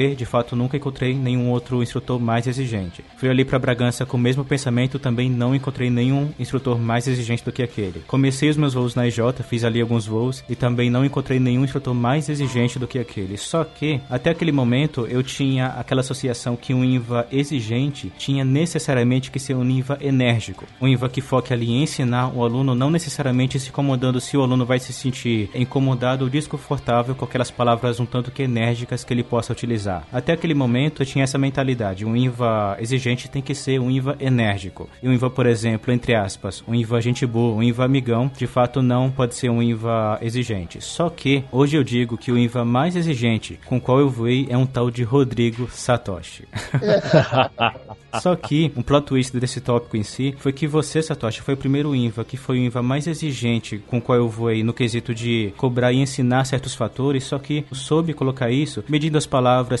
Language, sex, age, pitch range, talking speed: English, male, 20-39, 120-135 Hz, 205 wpm